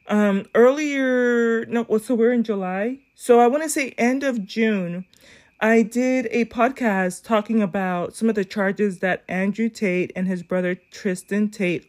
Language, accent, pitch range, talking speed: English, American, 195-250 Hz, 165 wpm